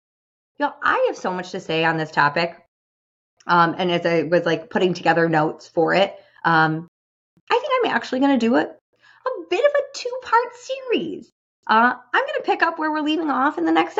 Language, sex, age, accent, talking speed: English, female, 20-39, American, 210 wpm